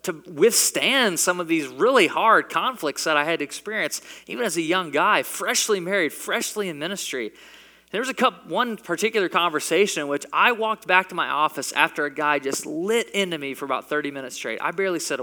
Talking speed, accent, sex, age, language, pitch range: 195 wpm, American, male, 20-39, English, 140-195 Hz